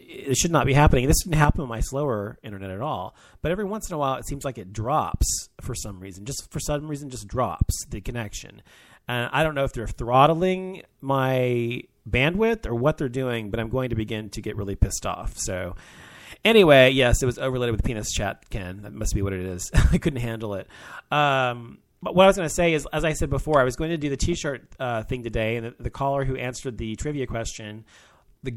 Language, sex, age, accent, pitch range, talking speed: English, male, 30-49, American, 105-135 Hz, 240 wpm